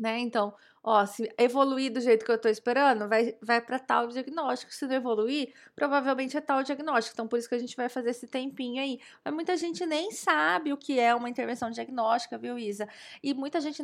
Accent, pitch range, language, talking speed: Brazilian, 225-275 Hz, Portuguese, 215 wpm